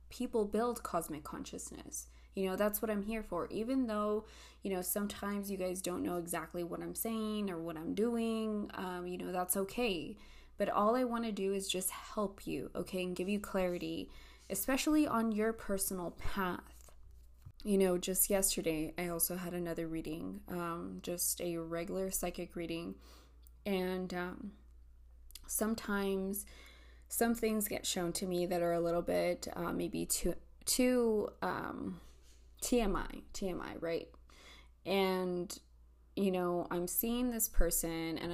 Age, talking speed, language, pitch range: 20-39, 155 wpm, English, 160-195 Hz